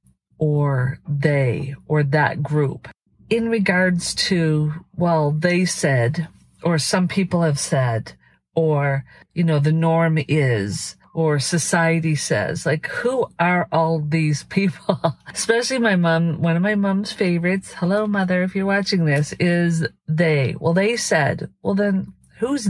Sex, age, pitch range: female, 50-69, 150-180 Hz